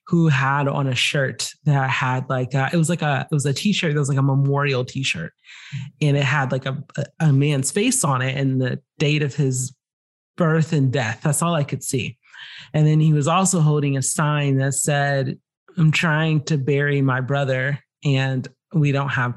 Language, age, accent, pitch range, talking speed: English, 30-49, American, 140-170 Hz, 205 wpm